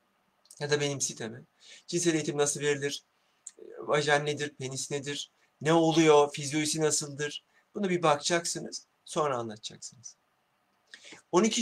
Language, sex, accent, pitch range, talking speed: Turkish, male, native, 145-175 Hz, 115 wpm